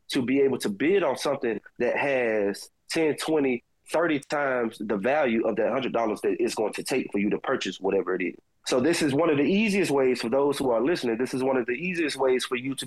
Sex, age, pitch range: male, 30-49, 125-165 Hz